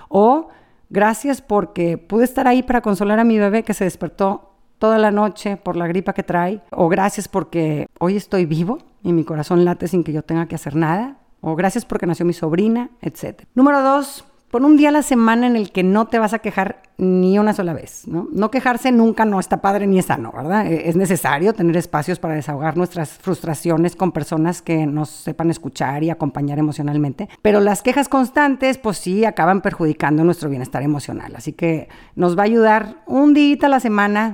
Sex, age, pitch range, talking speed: female, 40-59, 160-215 Hz, 205 wpm